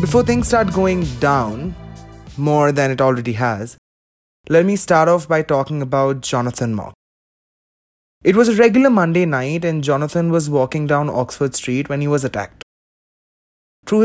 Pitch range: 125-170 Hz